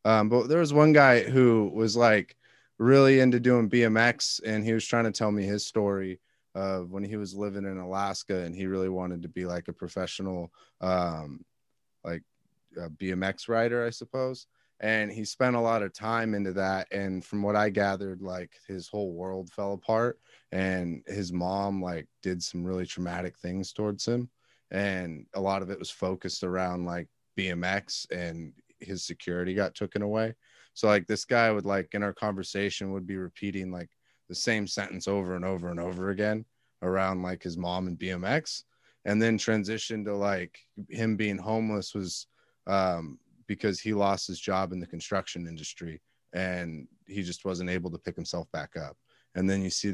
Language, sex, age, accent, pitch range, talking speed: English, male, 30-49, American, 90-110 Hz, 185 wpm